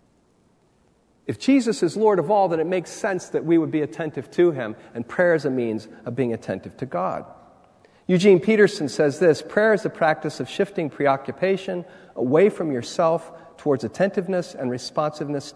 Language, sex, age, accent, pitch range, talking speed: English, male, 40-59, American, 120-165 Hz, 175 wpm